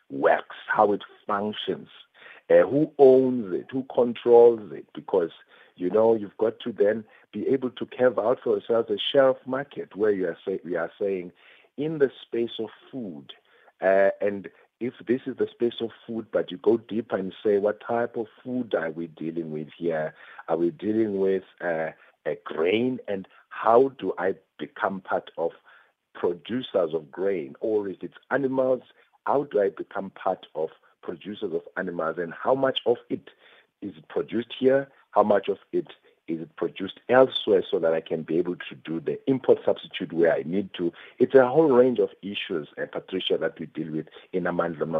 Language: English